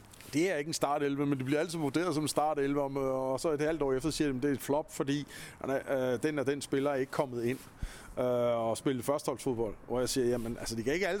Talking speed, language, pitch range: 235 wpm, Danish, 120-145 Hz